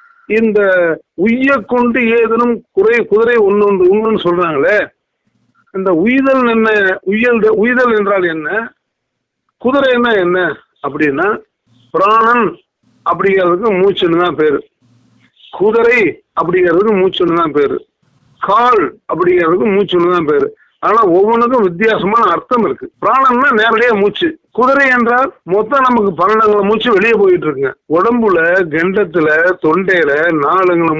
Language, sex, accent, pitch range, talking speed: Tamil, male, native, 185-255 Hz, 110 wpm